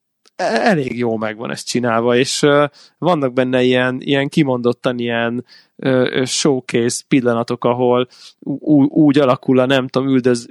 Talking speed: 125 wpm